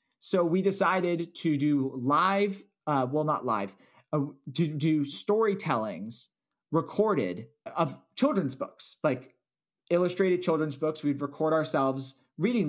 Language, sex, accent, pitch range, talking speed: English, male, American, 125-165 Hz, 125 wpm